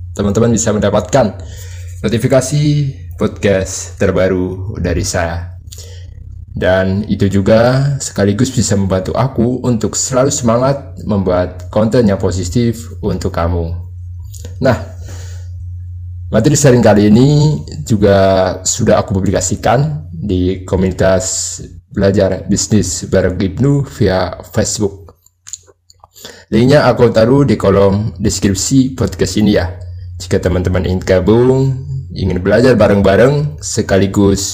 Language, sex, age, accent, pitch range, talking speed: Indonesian, male, 20-39, native, 90-110 Hz, 100 wpm